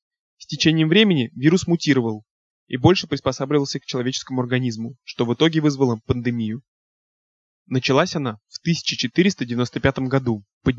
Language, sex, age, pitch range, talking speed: Russian, male, 20-39, 125-150 Hz, 120 wpm